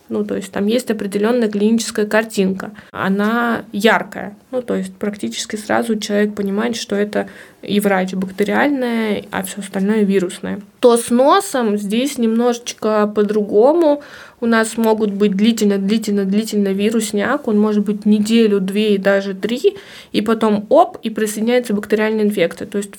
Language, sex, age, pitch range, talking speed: Russian, female, 20-39, 210-240 Hz, 145 wpm